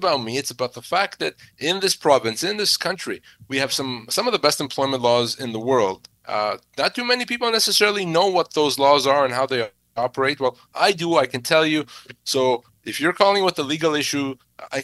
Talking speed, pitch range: 225 wpm, 130-155 Hz